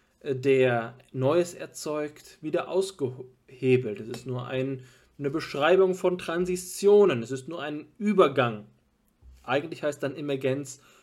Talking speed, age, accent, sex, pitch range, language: 120 wpm, 20-39, German, male, 125-180 Hz, German